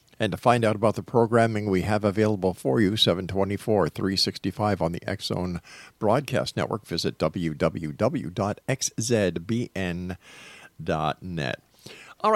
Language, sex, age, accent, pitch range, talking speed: English, male, 50-69, American, 100-130 Hz, 100 wpm